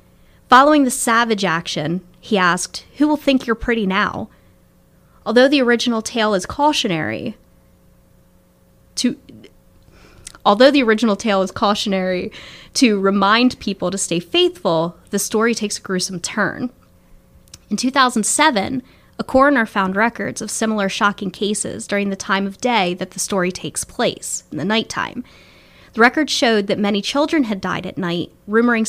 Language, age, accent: English, 20-39, American